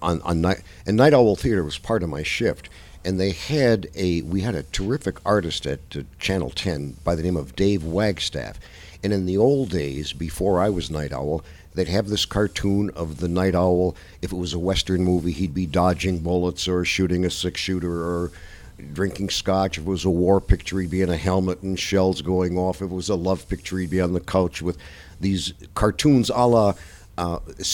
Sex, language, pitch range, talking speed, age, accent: male, English, 85-100 Hz, 215 wpm, 60-79, American